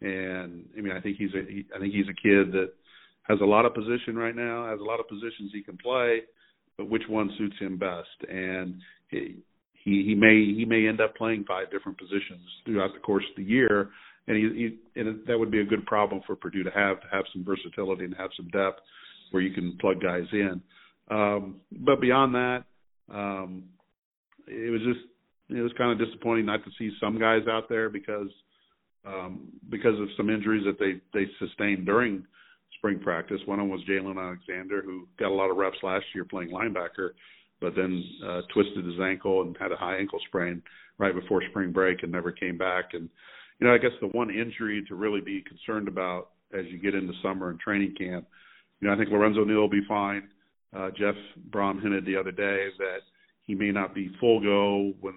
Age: 50-69